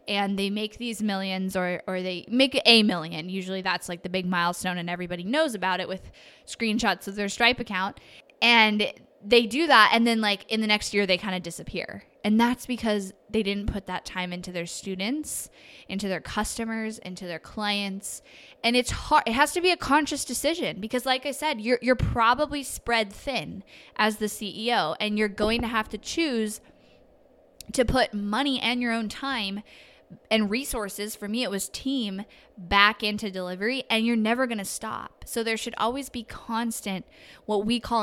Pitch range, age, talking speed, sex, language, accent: 195-240 Hz, 10-29, 190 wpm, female, English, American